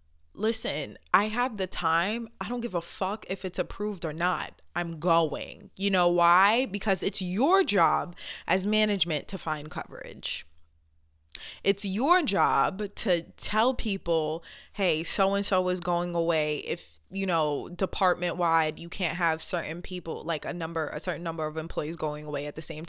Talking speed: 165 wpm